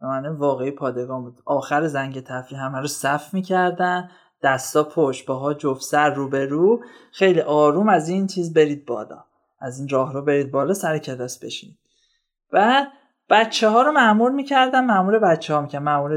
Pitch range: 145-210 Hz